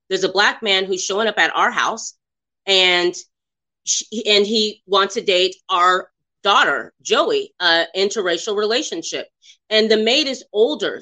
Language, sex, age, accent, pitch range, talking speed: English, female, 30-49, American, 175-250 Hz, 150 wpm